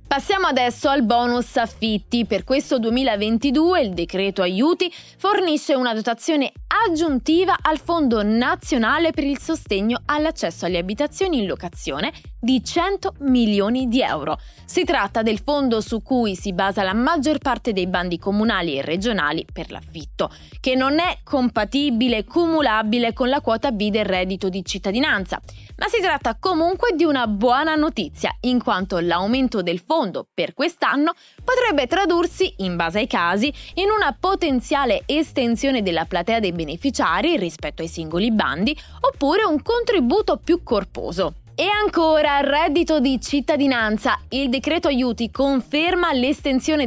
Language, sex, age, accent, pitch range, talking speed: Italian, female, 20-39, native, 215-315 Hz, 140 wpm